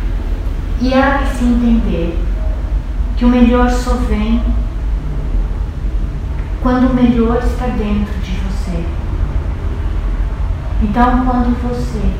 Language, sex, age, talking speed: Portuguese, female, 40-59, 100 wpm